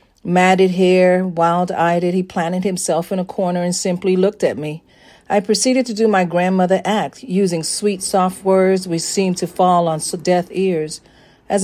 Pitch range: 170-205 Hz